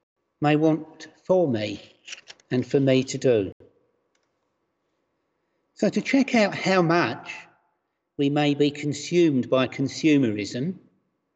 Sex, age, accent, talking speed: male, 60-79, British, 110 wpm